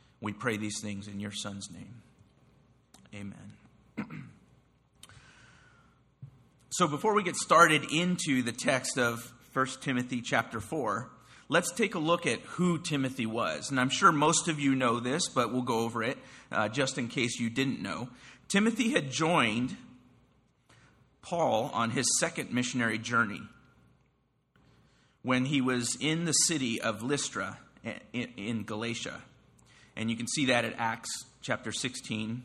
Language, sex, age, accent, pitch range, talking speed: English, male, 40-59, American, 115-140 Hz, 145 wpm